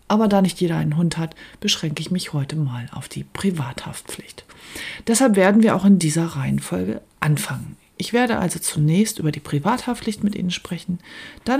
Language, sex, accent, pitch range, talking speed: German, female, German, 155-205 Hz, 175 wpm